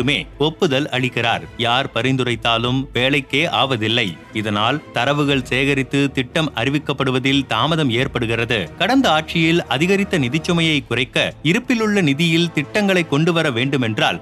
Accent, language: native, Tamil